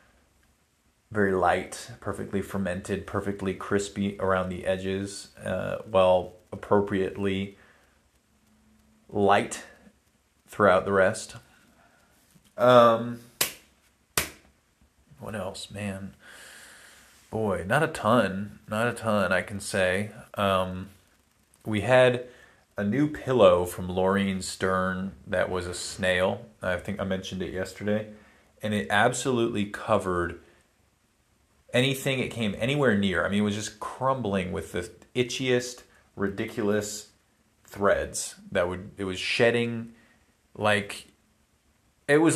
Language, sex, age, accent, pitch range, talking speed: English, male, 30-49, American, 95-110 Hz, 110 wpm